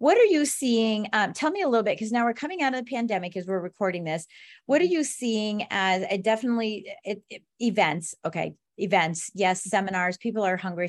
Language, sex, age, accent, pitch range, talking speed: English, female, 30-49, American, 165-205 Hz, 215 wpm